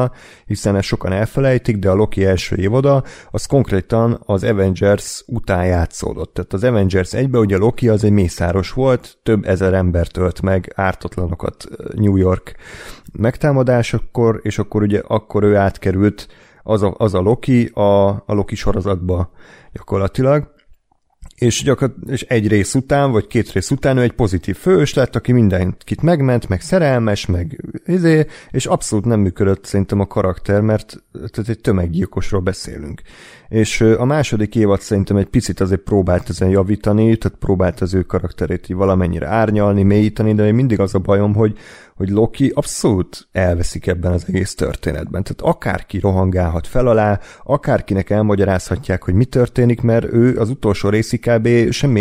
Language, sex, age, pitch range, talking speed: Hungarian, male, 30-49, 95-125 Hz, 155 wpm